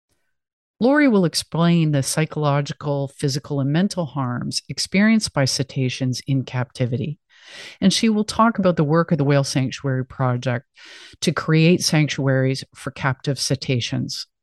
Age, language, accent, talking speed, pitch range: 50-69, English, American, 135 wpm, 140-175 Hz